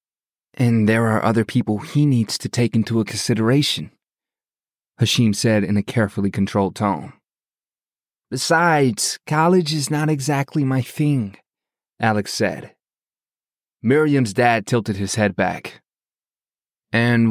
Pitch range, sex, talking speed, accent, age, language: 105-130 Hz, male, 120 wpm, American, 30-49, English